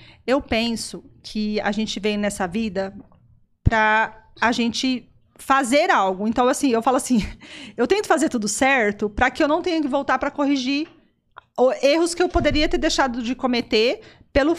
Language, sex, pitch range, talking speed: Portuguese, female, 235-325 Hz, 175 wpm